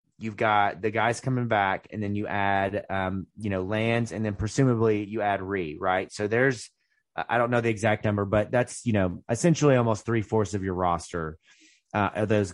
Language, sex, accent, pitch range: English, male, American, 100-125 Hz